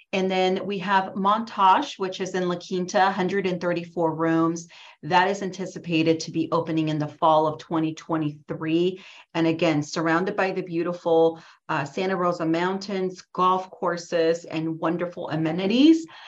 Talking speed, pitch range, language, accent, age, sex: 140 wpm, 160-190 Hz, English, American, 40-59, female